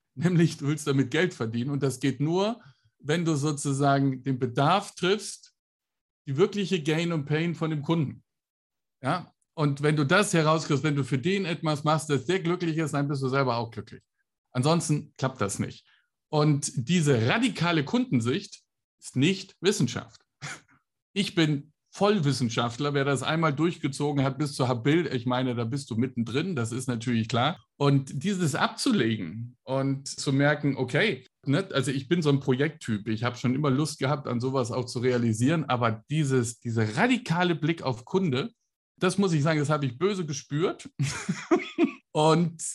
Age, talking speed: 50-69, 165 wpm